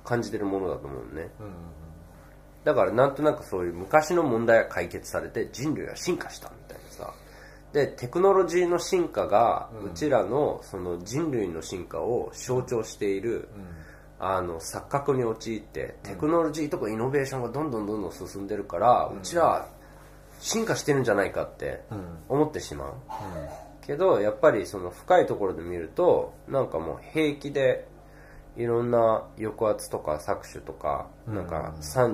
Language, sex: Japanese, male